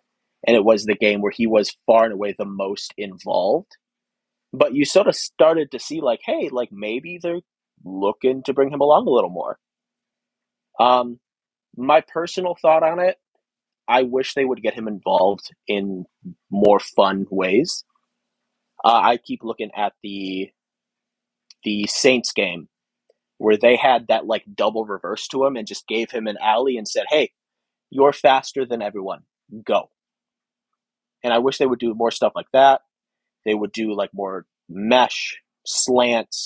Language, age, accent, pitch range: English, 30-49, American, 105-135 Hz